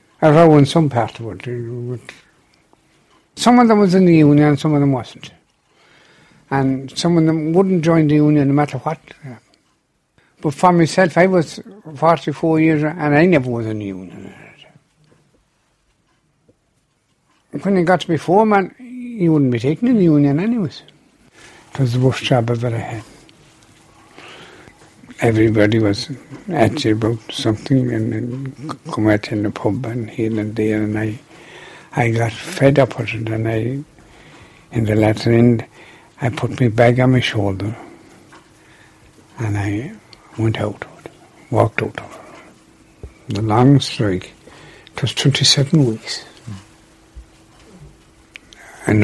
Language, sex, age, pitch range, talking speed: English, male, 60-79, 110-155 Hz, 140 wpm